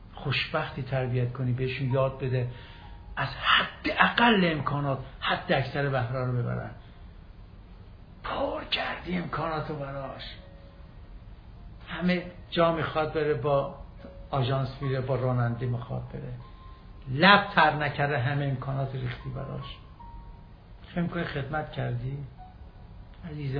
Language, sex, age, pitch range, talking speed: Persian, male, 60-79, 120-155 Hz, 105 wpm